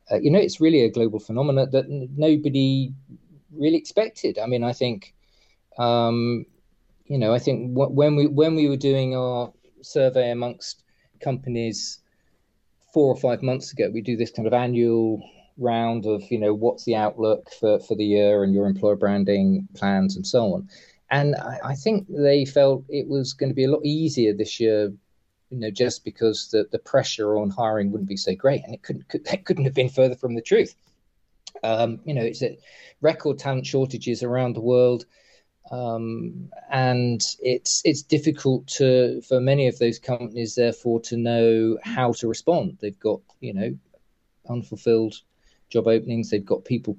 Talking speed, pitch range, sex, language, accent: 175 wpm, 115-140 Hz, male, English, British